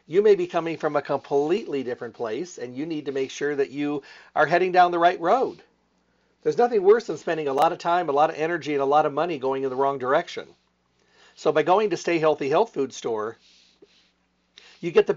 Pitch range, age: 145-200 Hz, 50-69